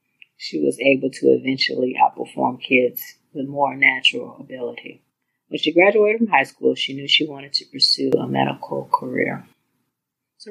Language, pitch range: English, 130-185 Hz